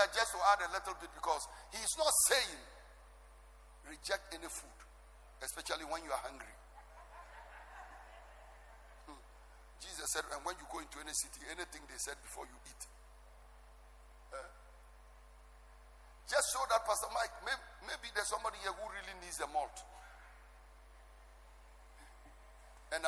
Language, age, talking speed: English, 50-69, 140 wpm